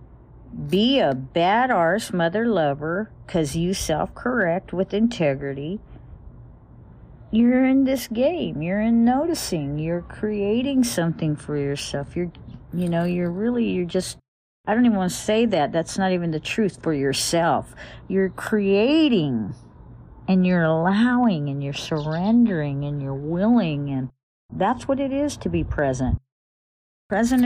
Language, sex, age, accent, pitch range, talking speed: English, female, 50-69, American, 140-210 Hz, 140 wpm